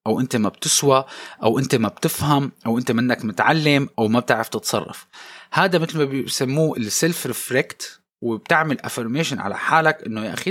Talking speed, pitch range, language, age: 165 wpm, 125-165 Hz, Arabic, 20-39